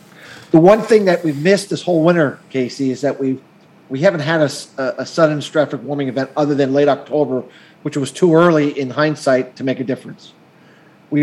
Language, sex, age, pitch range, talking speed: English, male, 40-59, 140-175 Hz, 190 wpm